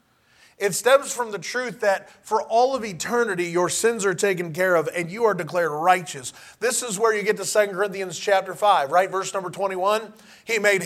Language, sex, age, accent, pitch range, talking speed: English, male, 30-49, American, 180-215 Hz, 205 wpm